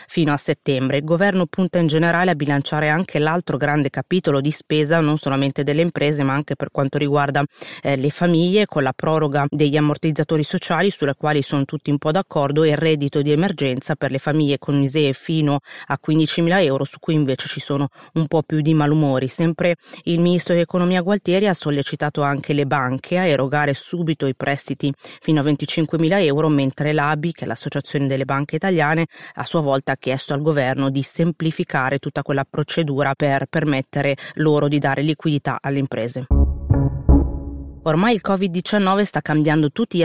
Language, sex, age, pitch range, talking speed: Italian, female, 30-49, 140-170 Hz, 180 wpm